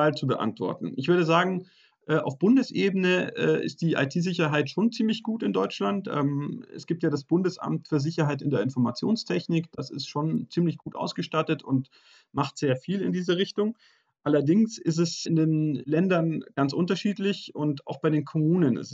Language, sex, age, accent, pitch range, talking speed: German, male, 30-49, German, 135-175 Hz, 165 wpm